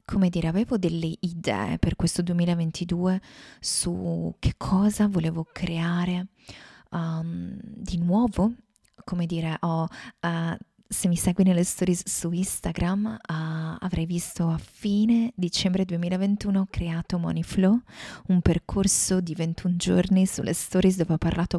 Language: Italian